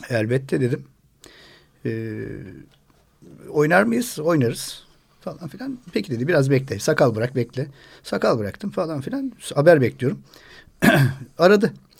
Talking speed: 110 wpm